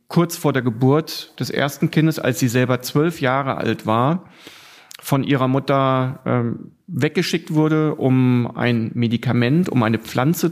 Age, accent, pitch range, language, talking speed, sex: 40-59, German, 125-155 Hz, German, 150 wpm, male